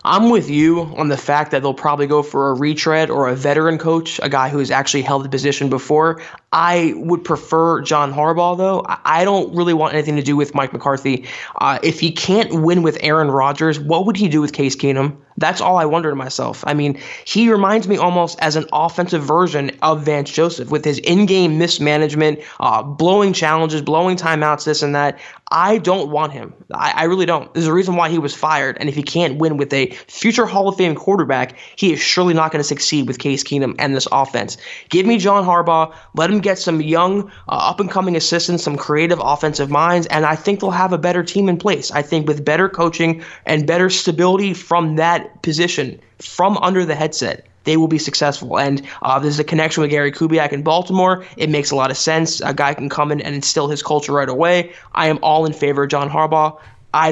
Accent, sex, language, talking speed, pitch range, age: American, male, English, 220 wpm, 145-175 Hz, 20-39